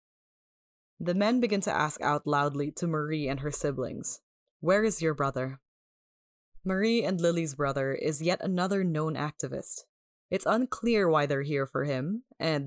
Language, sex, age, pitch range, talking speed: English, female, 20-39, 145-180 Hz, 155 wpm